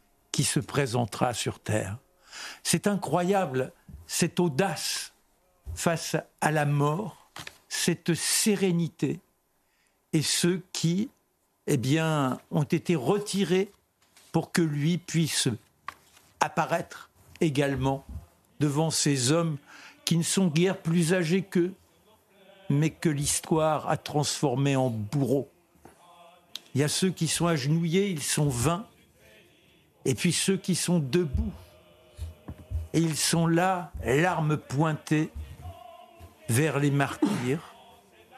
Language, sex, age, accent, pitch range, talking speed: French, male, 60-79, French, 130-175 Hz, 110 wpm